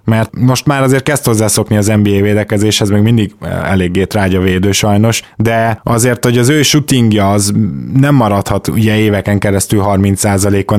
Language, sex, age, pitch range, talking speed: Hungarian, male, 20-39, 105-125 Hz, 155 wpm